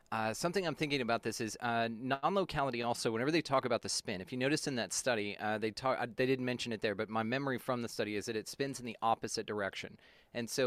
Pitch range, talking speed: 110-130 Hz, 260 wpm